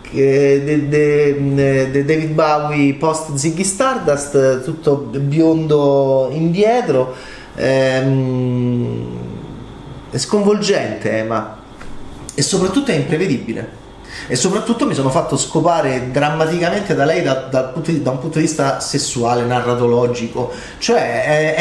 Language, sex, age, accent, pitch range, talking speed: Italian, male, 30-49, native, 125-170 Hz, 105 wpm